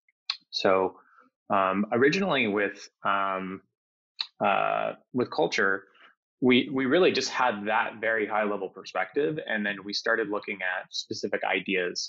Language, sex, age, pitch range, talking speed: English, male, 20-39, 95-110 Hz, 130 wpm